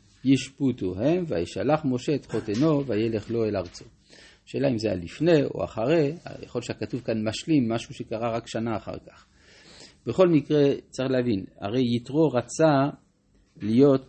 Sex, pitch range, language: male, 105-145 Hz, Hebrew